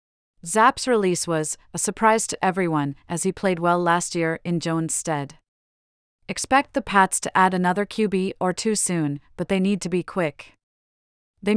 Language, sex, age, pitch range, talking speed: English, female, 30-49, 160-200 Hz, 170 wpm